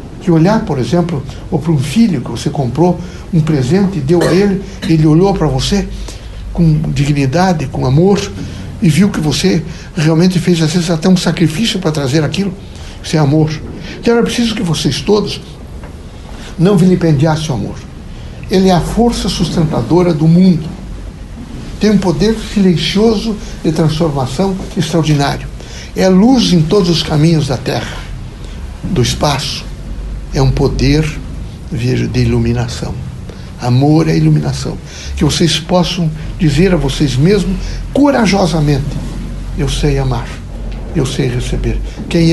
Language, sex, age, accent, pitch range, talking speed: Portuguese, male, 60-79, Brazilian, 130-175 Hz, 140 wpm